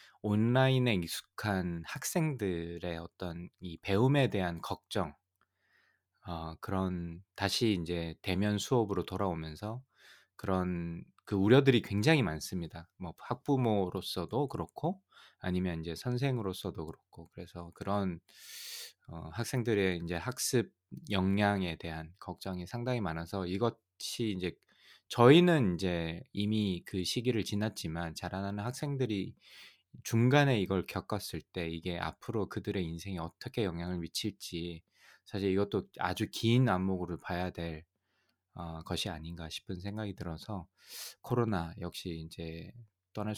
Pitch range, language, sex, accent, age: 85-110 Hz, Korean, male, native, 20-39